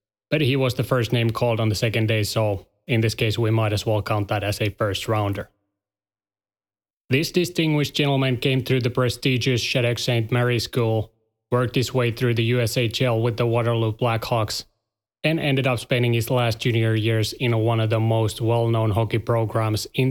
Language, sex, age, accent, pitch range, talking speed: English, male, 20-39, Finnish, 110-125 Hz, 190 wpm